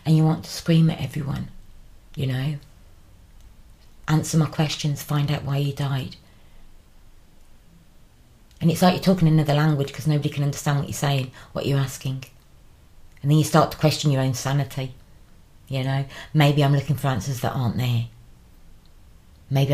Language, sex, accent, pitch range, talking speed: English, female, British, 115-145 Hz, 165 wpm